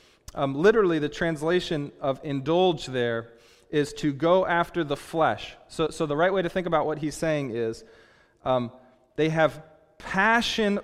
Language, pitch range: English, 135-170 Hz